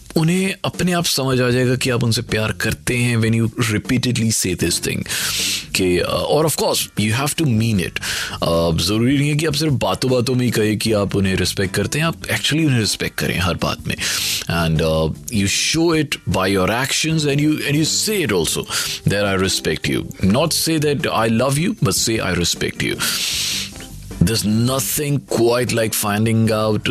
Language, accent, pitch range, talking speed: Hindi, native, 100-135 Hz, 185 wpm